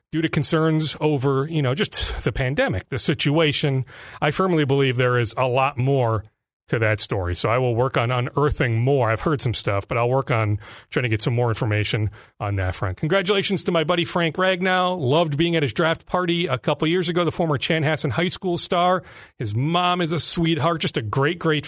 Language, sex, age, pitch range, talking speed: English, male, 40-59, 120-165 Hz, 215 wpm